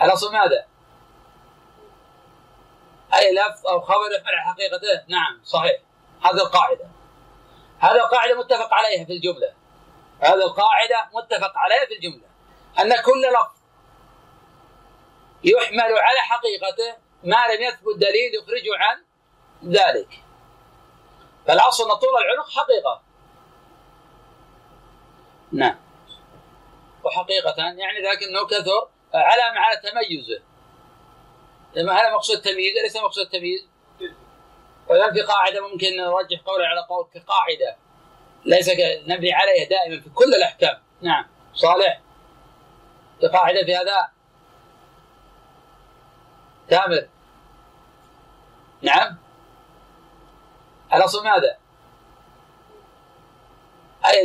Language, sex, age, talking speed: Arabic, male, 40-59, 95 wpm